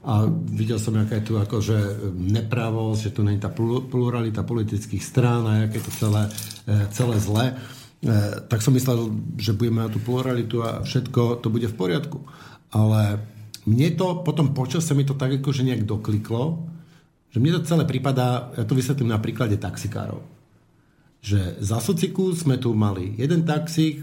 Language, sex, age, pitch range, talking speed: Slovak, male, 50-69, 110-150 Hz, 165 wpm